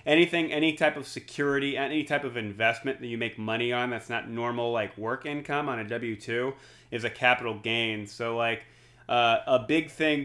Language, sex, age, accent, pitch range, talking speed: English, male, 30-49, American, 120-140 Hz, 195 wpm